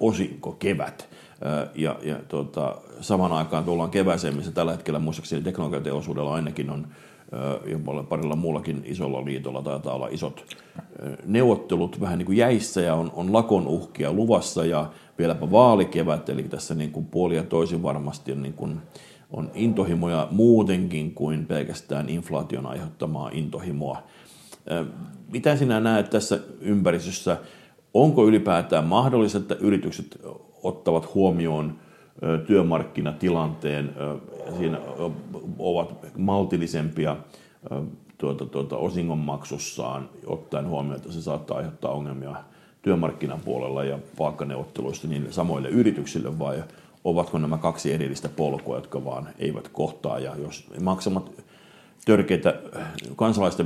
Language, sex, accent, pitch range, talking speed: Finnish, male, native, 75-95 Hz, 110 wpm